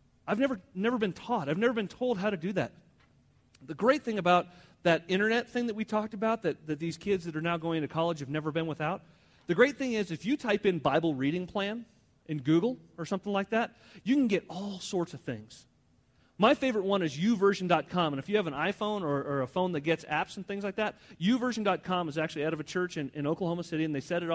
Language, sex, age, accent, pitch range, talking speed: English, male, 40-59, American, 160-210 Hz, 245 wpm